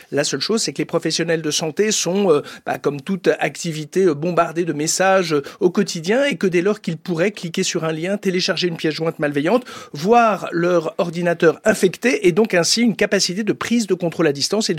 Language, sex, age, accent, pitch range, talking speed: French, male, 50-69, French, 165-210 Hz, 205 wpm